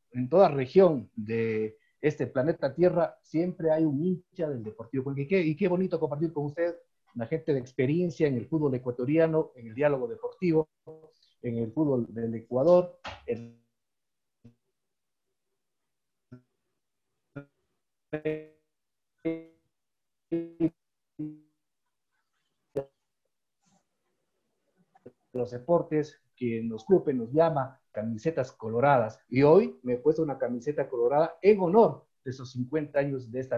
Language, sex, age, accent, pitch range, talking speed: Spanish, male, 50-69, Mexican, 125-170 Hz, 115 wpm